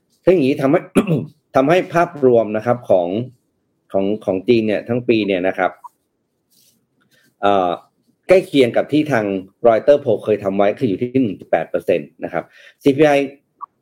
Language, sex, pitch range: Thai, male, 100-135 Hz